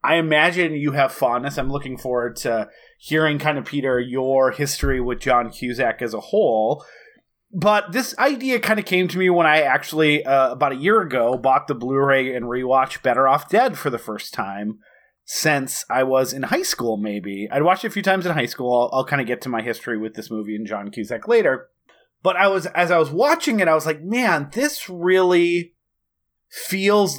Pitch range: 125-175 Hz